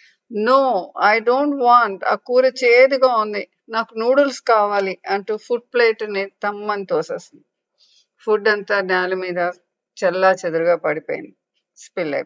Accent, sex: Indian, female